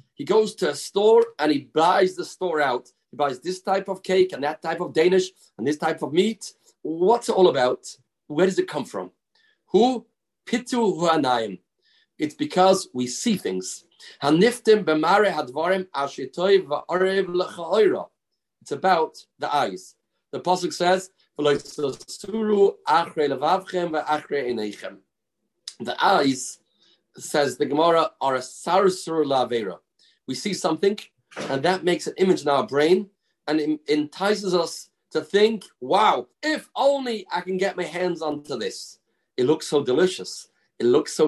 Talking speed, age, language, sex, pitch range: 135 wpm, 40-59, English, male, 150-210 Hz